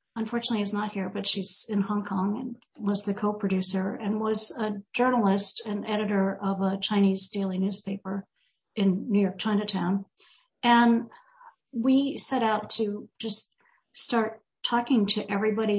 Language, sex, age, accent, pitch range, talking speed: English, female, 50-69, American, 195-225 Hz, 145 wpm